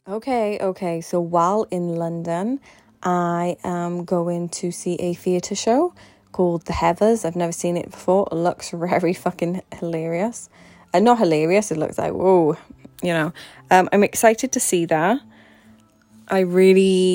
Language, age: English, 20-39